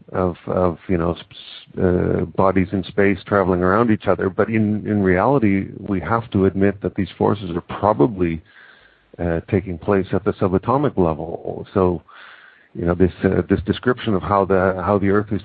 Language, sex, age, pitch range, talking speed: English, male, 50-69, 90-105 Hz, 180 wpm